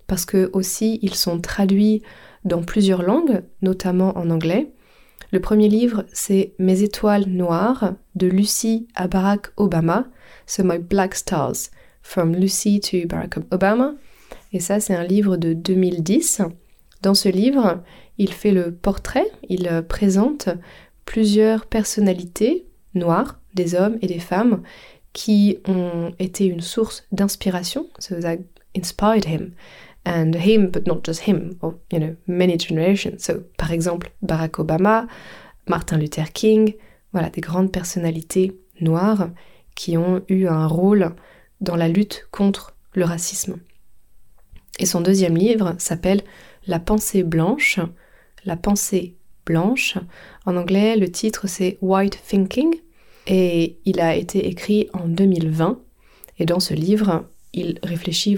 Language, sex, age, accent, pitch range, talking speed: French, female, 20-39, French, 175-205 Hz, 135 wpm